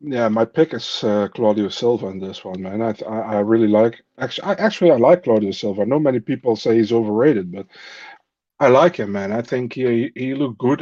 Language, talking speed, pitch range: English, 220 wpm, 110-135 Hz